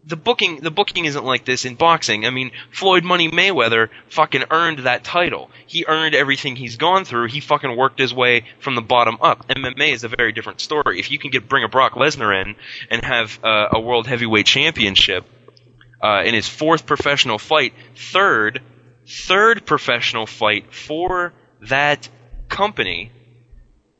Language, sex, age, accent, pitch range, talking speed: English, male, 20-39, American, 120-160 Hz, 170 wpm